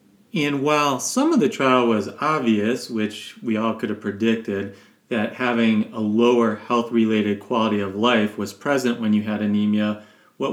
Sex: male